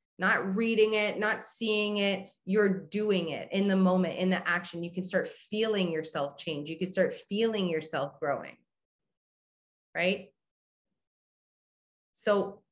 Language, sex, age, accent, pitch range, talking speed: English, female, 20-39, American, 175-215 Hz, 135 wpm